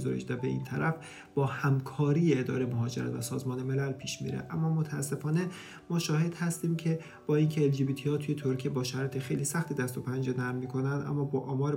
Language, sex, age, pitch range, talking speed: English, male, 40-59, 130-145 Hz, 200 wpm